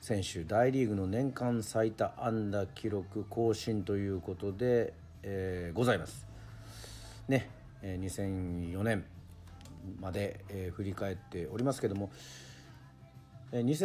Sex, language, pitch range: male, Japanese, 90-120 Hz